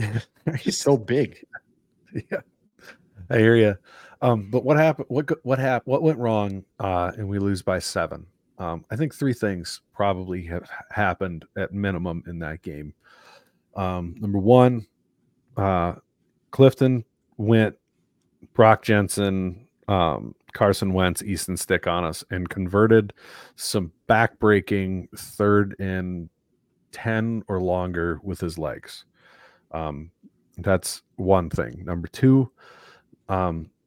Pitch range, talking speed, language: 85-110 Hz, 125 wpm, English